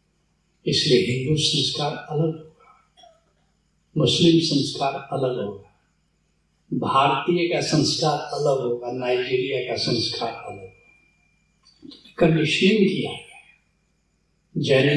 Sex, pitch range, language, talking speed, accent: male, 125-160 Hz, Hindi, 65 wpm, native